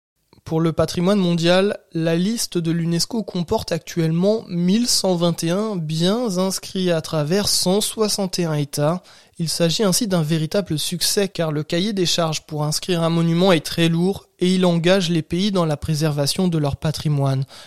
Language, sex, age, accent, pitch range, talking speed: French, male, 20-39, French, 160-190 Hz, 155 wpm